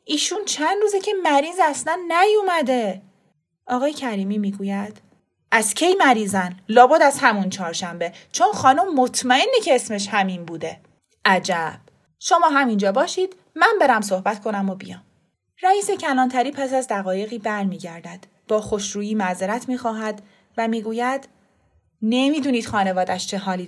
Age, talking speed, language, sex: 30-49, 125 wpm, Persian, female